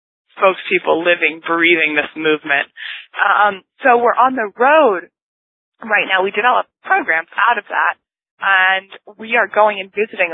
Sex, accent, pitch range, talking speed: female, American, 175-205 Hz, 150 wpm